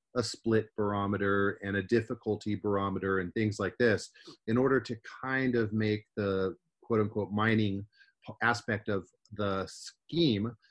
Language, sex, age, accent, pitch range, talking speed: English, male, 30-49, American, 95-110 Hz, 140 wpm